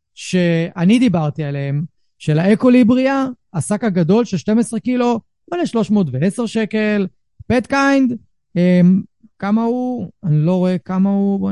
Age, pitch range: 30-49, 170-235 Hz